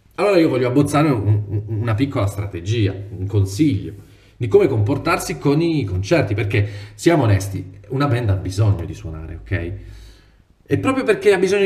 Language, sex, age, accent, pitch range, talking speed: Italian, male, 30-49, native, 100-140 Hz, 165 wpm